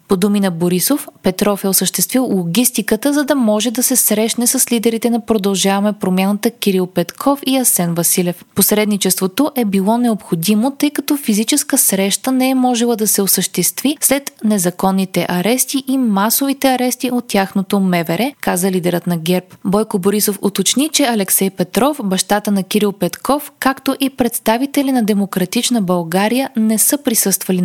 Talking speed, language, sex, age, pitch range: 150 wpm, Bulgarian, female, 20-39, 190-255 Hz